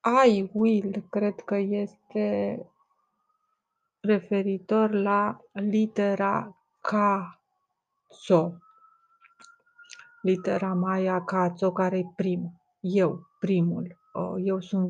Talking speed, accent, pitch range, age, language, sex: 75 wpm, native, 180-215 Hz, 30-49, Romanian, female